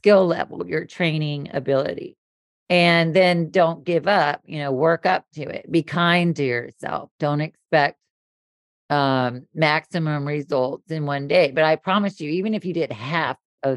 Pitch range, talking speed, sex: 140-170 Hz, 165 wpm, female